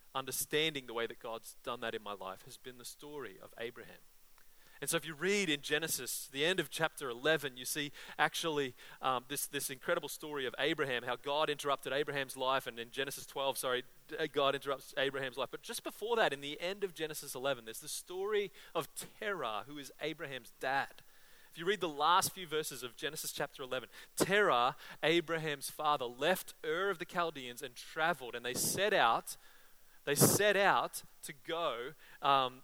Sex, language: male, English